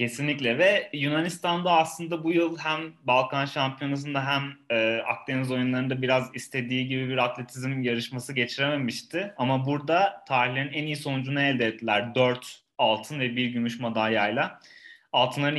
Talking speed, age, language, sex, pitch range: 135 wpm, 30-49, Turkish, male, 120-150 Hz